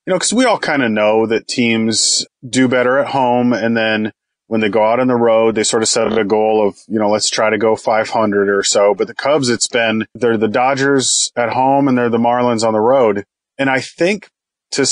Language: English